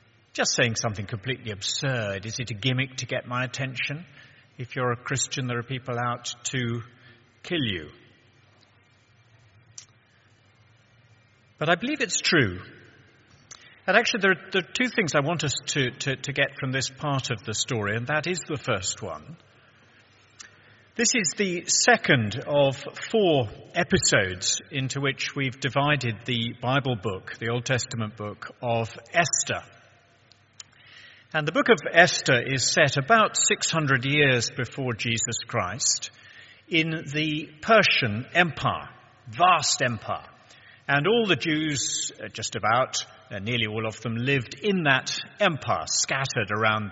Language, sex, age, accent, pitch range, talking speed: English, male, 50-69, British, 115-145 Hz, 140 wpm